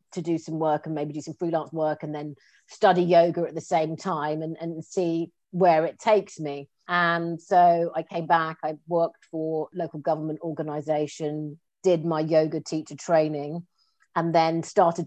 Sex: female